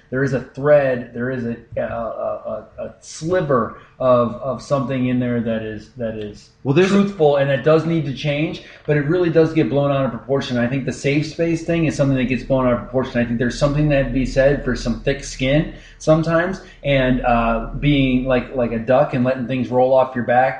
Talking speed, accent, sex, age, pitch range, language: 225 wpm, American, male, 20-39, 125-145 Hz, English